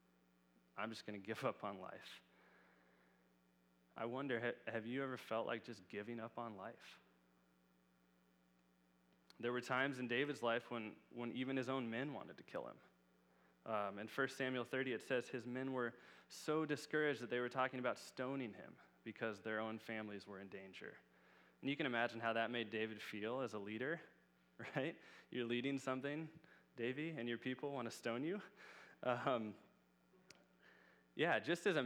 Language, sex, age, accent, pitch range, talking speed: English, male, 20-39, American, 95-130 Hz, 170 wpm